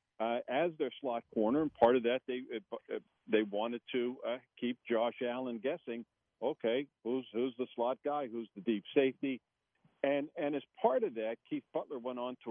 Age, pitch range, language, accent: 50-69, 115-140 Hz, English, American